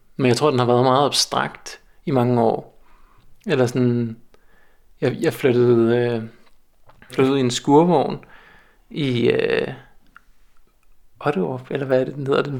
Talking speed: 150 wpm